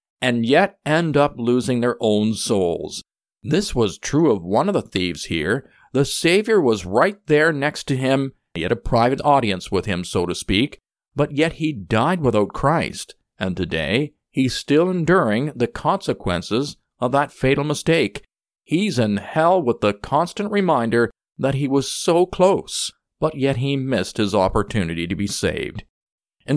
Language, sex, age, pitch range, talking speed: English, male, 50-69, 110-155 Hz, 165 wpm